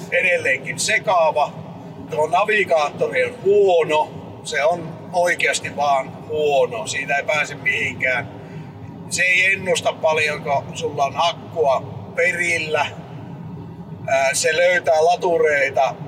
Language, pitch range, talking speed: Finnish, 155-225 Hz, 100 wpm